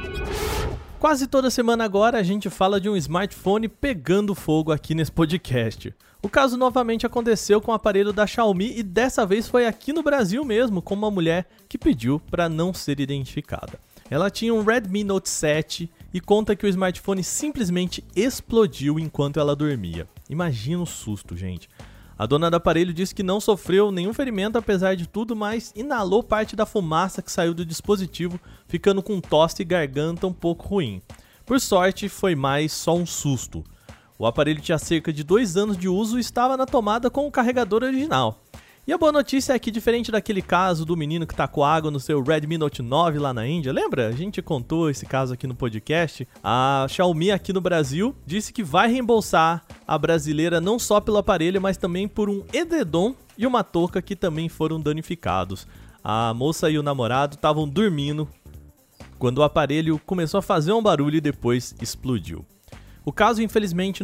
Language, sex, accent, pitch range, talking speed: Portuguese, male, Brazilian, 150-210 Hz, 185 wpm